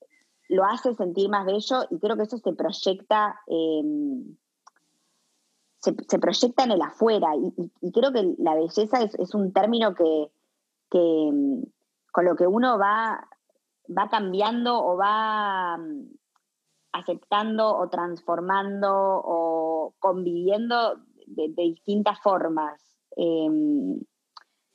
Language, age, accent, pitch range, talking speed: Spanish, 20-39, Argentinian, 175-225 Hz, 120 wpm